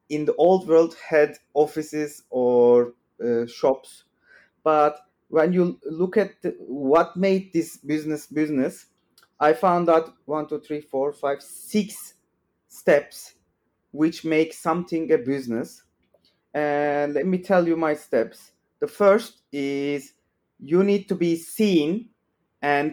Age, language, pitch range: 30-49, English, 135-165 Hz